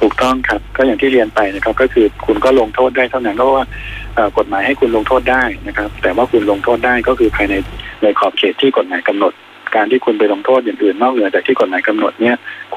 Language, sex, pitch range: Thai, male, 105-130 Hz